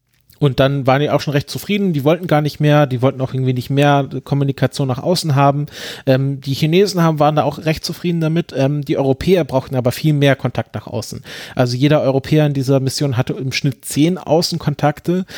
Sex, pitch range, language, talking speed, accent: male, 125-145 Hz, German, 210 wpm, German